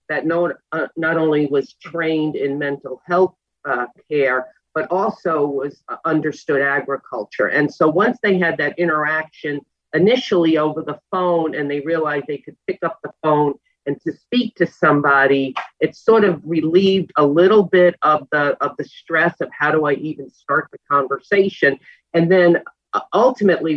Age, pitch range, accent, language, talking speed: 50-69, 140-170 Hz, American, English, 160 wpm